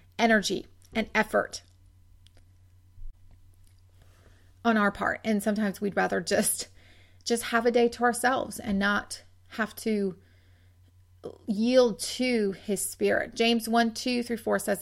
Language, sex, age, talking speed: English, female, 30-49, 125 wpm